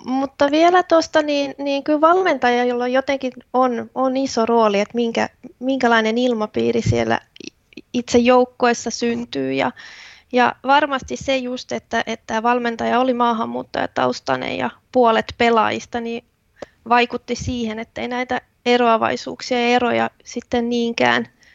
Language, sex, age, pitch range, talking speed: Finnish, female, 20-39, 225-260 Hz, 125 wpm